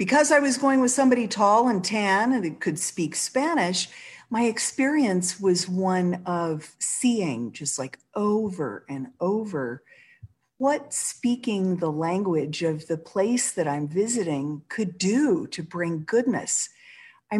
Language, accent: English, American